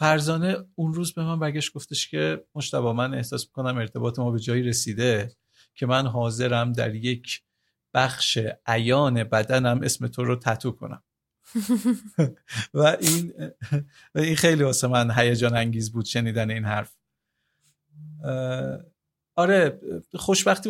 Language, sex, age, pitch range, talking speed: Persian, male, 50-69, 120-155 Hz, 130 wpm